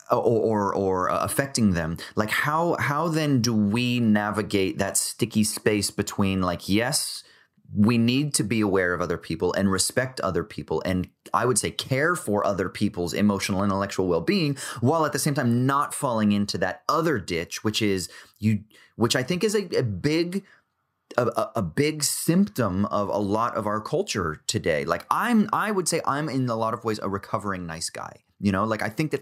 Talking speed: 195 wpm